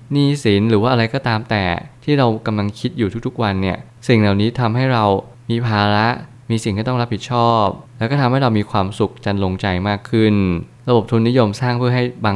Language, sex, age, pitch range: Thai, male, 20-39, 100-120 Hz